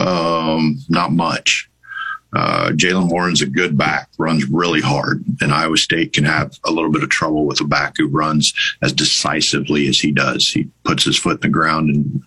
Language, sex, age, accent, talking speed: English, male, 50-69, American, 195 wpm